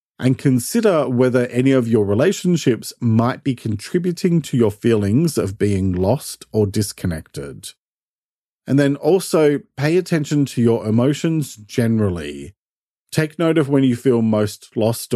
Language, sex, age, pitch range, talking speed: English, male, 40-59, 105-140 Hz, 140 wpm